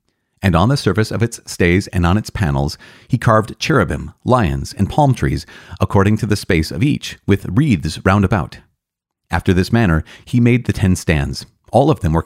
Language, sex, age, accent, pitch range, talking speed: English, male, 30-49, American, 85-115 Hz, 195 wpm